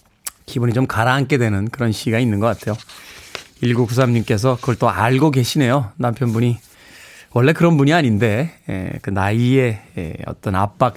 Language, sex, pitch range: Korean, male, 105-140 Hz